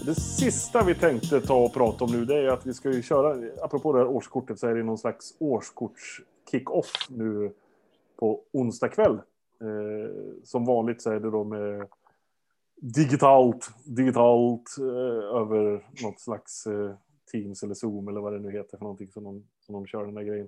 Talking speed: 185 wpm